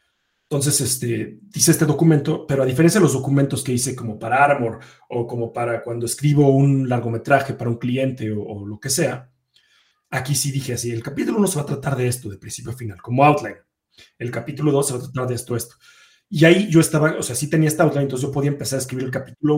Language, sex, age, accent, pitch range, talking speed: Spanish, male, 30-49, Mexican, 120-150 Hz, 240 wpm